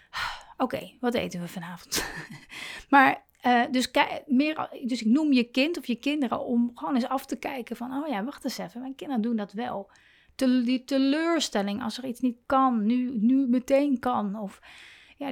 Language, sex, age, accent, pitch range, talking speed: Dutch, female, 30-49, Dutch, 210-255 Hz, 180 wpm